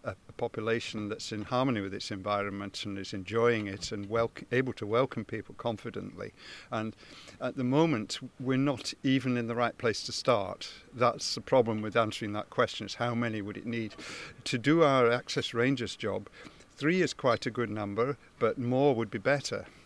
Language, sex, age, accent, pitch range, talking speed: English, male, 50-69, British, 110-130 Hz, 185 wpm